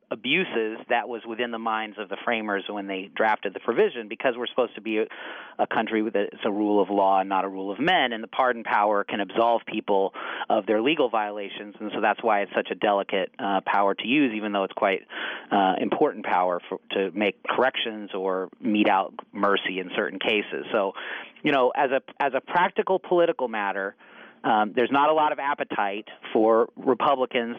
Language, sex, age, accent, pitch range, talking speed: English, male, 40-59, American, 105-130 Hz, 205 wpm